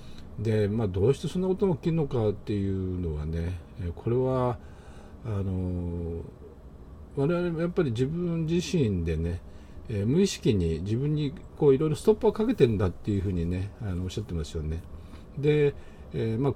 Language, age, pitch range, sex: Japanese, 50-69, 80-130 Hz, male